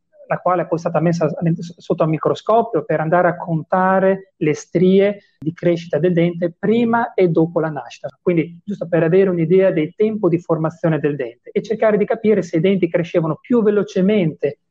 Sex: male